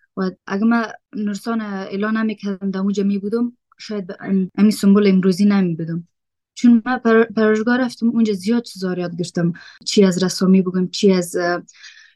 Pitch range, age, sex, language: 185-220 Hz, 20-39, female, Persian